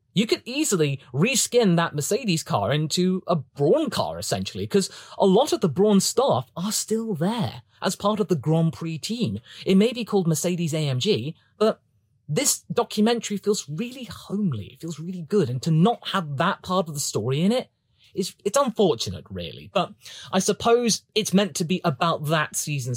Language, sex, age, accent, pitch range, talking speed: English, male, 30-49, British, 145-210 Hz, 185 wpm